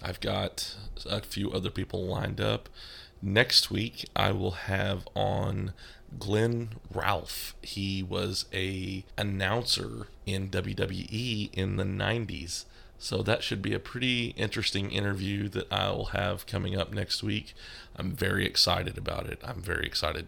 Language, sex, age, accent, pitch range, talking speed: English, male, 30-49, American, 95-110 Hz, 140 wpm